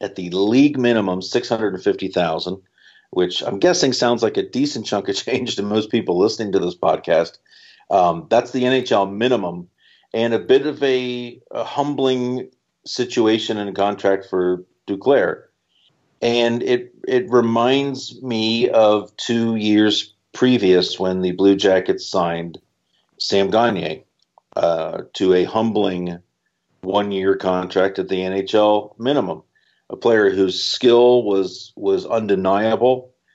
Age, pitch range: 50-69, 95-125 Hz